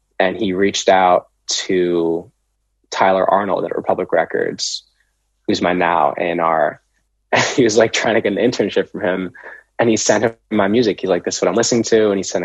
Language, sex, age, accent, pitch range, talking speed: English, male, 20-39, American, 90-110 Hz, 200 wpm